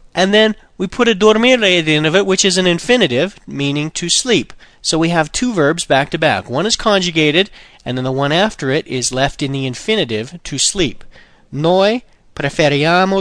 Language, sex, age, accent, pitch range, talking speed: Italian, male, 40-59, American, 140-200 Hz, 200 wpm